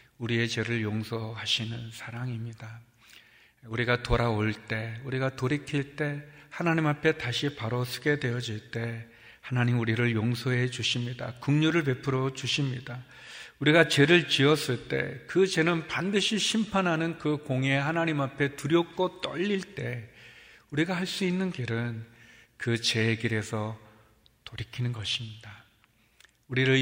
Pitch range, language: 120-150 Hz, Korean